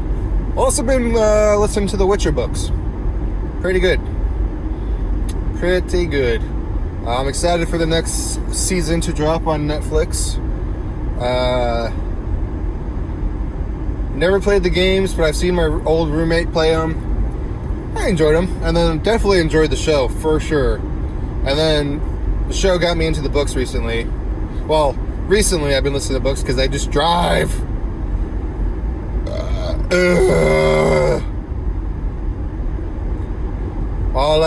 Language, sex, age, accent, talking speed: English, male, 20-39, American, 120 wpm